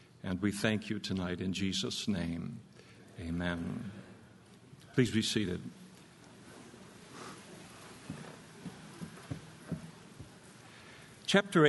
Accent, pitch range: American, 110-135 Hz